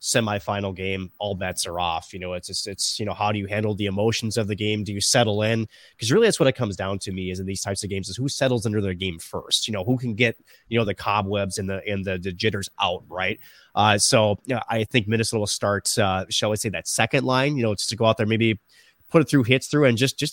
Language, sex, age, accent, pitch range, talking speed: English, male, 20-39, American, 100-120 Hz, 285 wpm